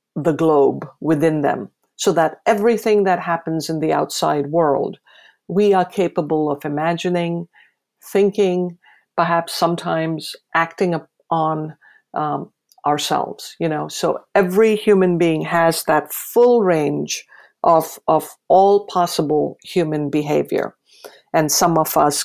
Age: 50-69